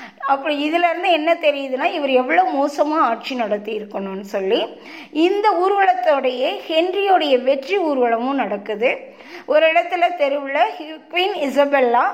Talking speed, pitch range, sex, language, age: 110 wpm, 250-345 Hz, female, Tamil, 20-39